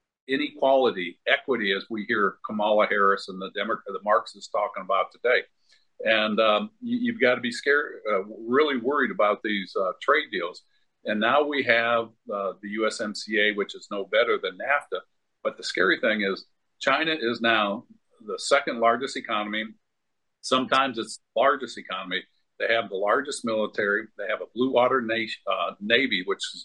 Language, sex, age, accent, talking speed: English, male, 50-69, American, 170 wpm